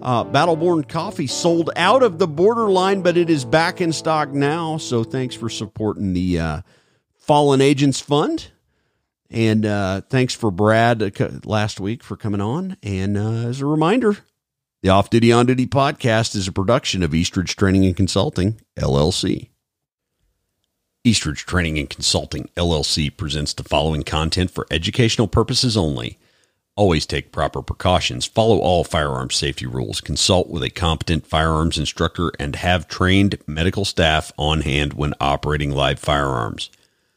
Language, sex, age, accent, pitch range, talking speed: English, male, 50-69, American, 75-110 Hz, 150 wpm